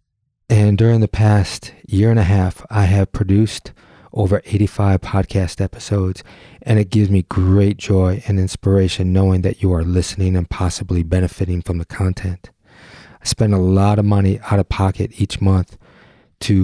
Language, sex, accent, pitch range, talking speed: English, male, American, 90-105 Hz, 165 wpm